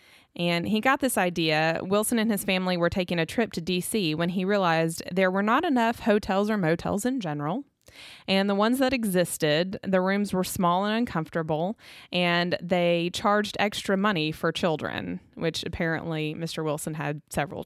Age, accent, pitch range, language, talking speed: 20-39, American, 165-220 Hz, English, 175 wpm